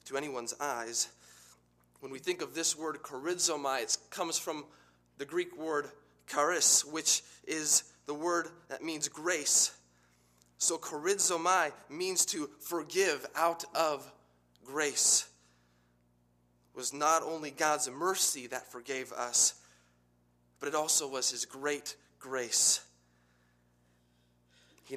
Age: 30-49